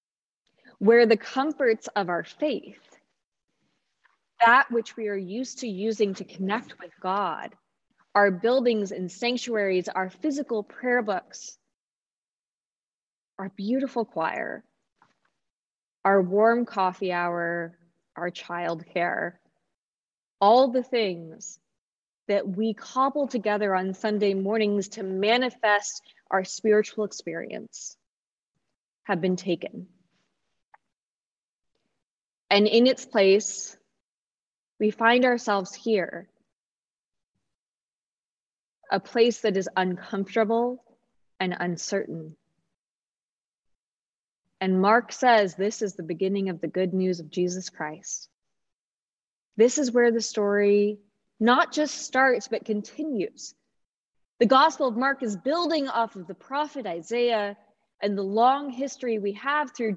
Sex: female